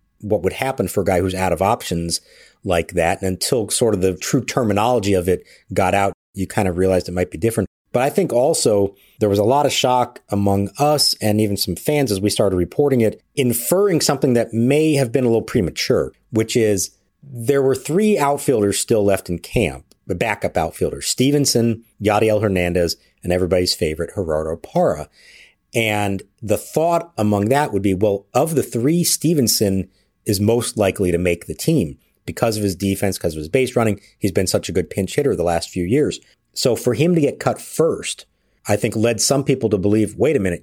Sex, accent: male, American